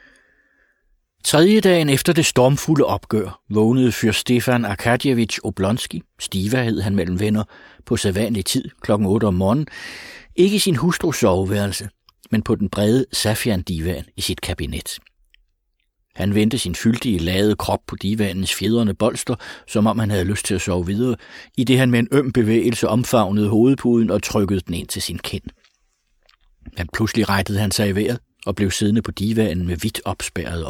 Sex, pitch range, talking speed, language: male, 95-130 Hz, 170 wpm, Danish